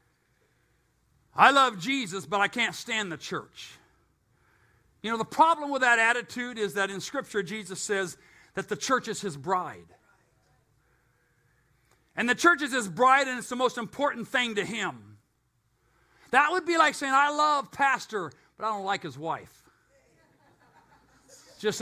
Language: English